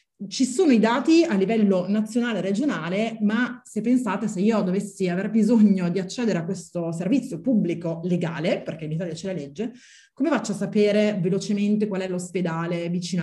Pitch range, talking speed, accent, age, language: 180-230 Hz, 175 wpm, native, 30-49, Italian